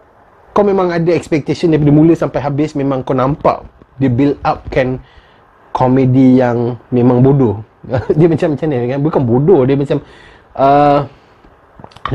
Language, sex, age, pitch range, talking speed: Malay, male, 30-49, 120-160 Hz, 145 wpm